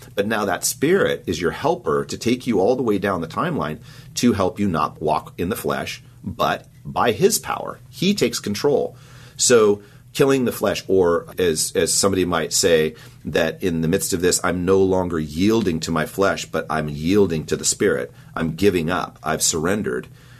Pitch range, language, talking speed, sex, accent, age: 70-90 Hz, English, 190 wpm, male, American, 40-59